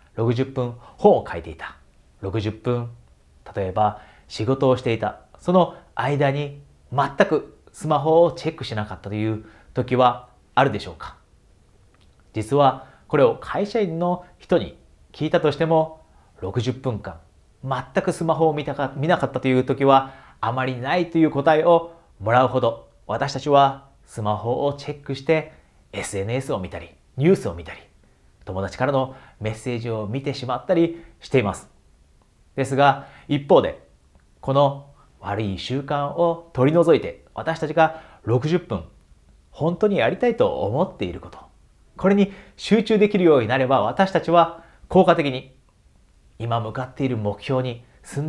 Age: 40-59